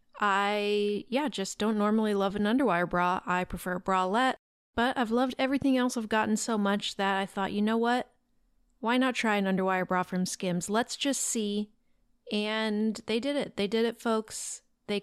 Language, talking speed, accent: English, 190 wpm, American